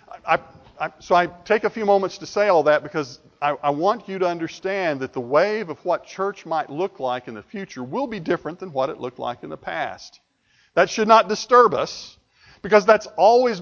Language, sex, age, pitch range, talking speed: English, male, 50-69, 140-205 Hz, 210 wpm